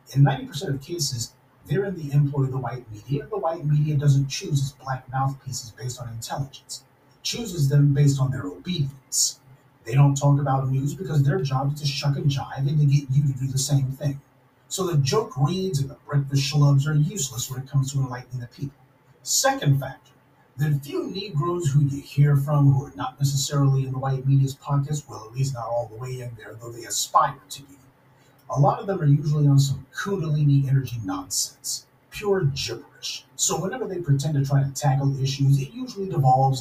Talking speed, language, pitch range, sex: 205 wpm, English, 130-145 Hz, male